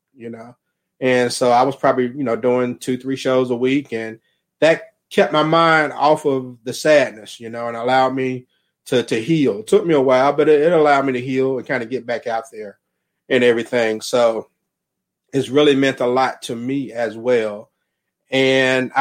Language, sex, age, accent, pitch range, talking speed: English, male, 30-49, American, 115-140 Hz, 200 wpm